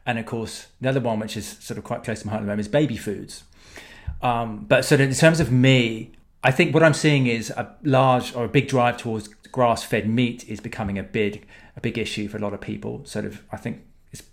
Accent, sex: British, male